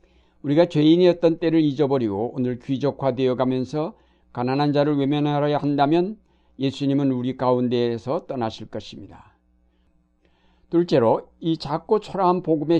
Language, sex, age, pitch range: Korean, male, 60-79, 110-150 Hz